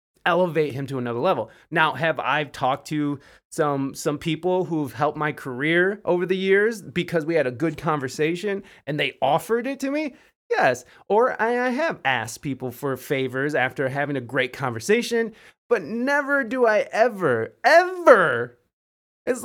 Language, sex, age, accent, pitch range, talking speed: English, male, 20-39, American, 140-190 Hz, 160 wpm